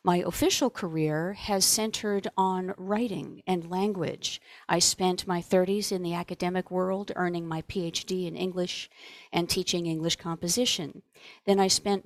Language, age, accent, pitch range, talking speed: English, 50-69, American, 175-220 Hz, 145 wpm